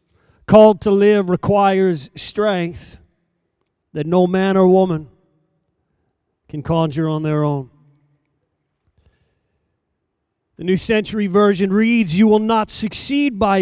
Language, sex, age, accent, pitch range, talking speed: English, male, 40-59, American, 150-205 Hz, 110 wpm